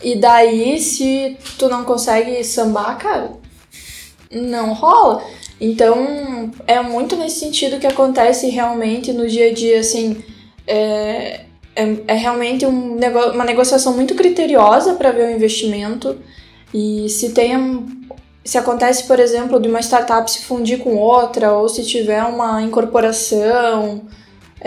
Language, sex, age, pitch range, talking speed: Portuguese, female, 10-29, 225-260 Hz, 125 wpm